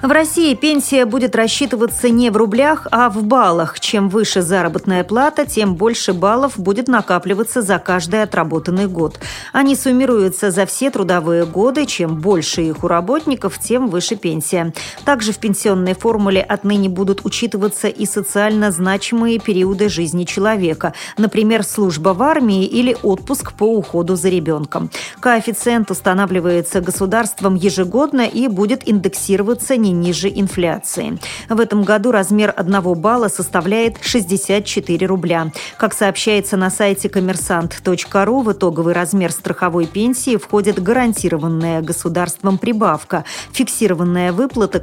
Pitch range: 180-225 Hz